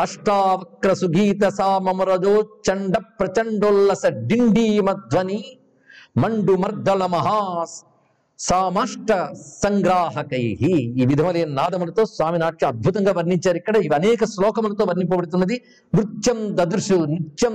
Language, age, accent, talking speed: Telugu, 60-79, native, 45 wpm